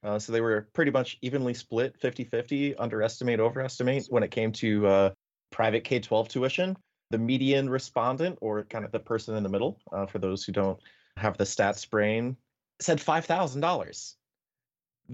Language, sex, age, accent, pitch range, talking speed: English, male, 30-49, American, 110-150 Hz, 165 wpm